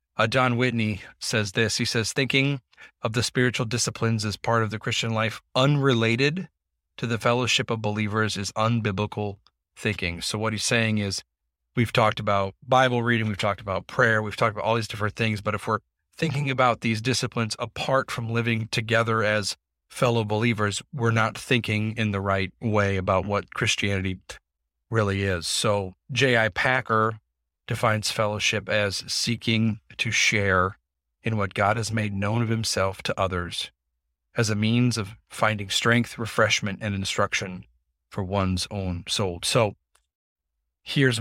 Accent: American